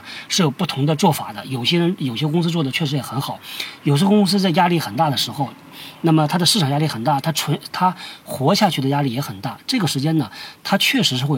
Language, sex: Chinese, male